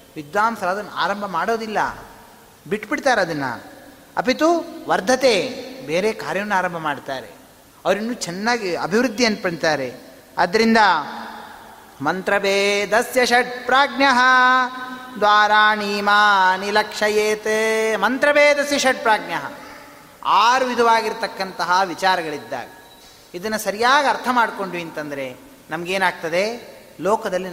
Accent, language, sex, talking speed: native, Kannada, male, 80 wpm